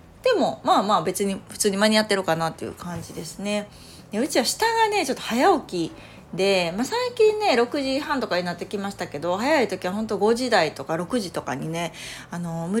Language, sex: Japanese, female